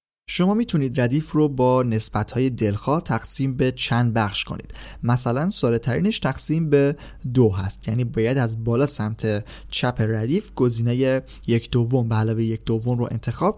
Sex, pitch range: male, 115-145 Hz